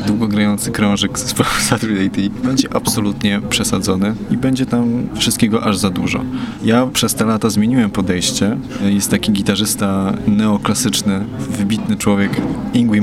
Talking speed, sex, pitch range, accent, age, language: 130 wpm, male, 100-130 Hz, native, 20-39, Polish